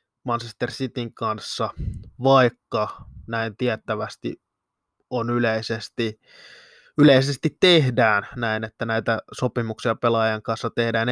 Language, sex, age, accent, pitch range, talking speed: Finnish, male, 20-39, native, 115-135 Hz, 90 wpm